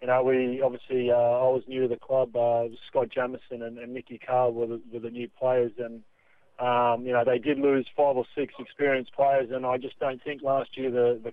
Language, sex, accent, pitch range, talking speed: English, male, Australian, 125-140 Hz, 240 wpm